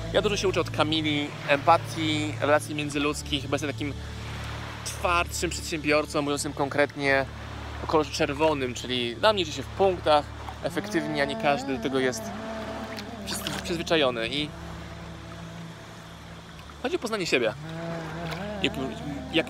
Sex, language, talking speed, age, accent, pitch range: male, Polish, 120 wpm, 20-39, native, 125-170 Hz